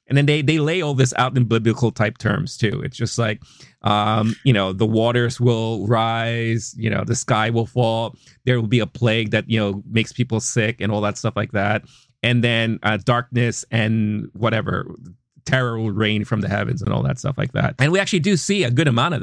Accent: American